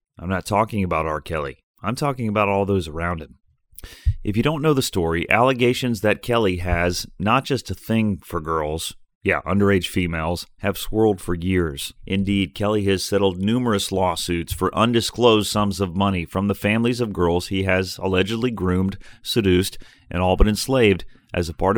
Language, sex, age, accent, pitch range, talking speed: English, male, 30-49, American, 90-115 Hz, 175 wpm